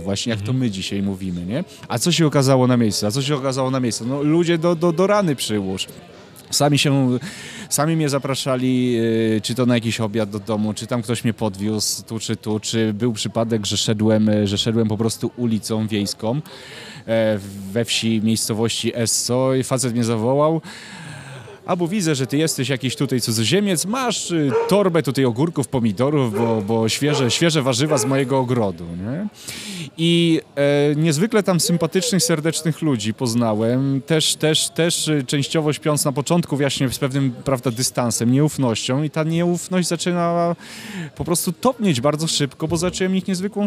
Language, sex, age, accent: Polish, male, 30-49, native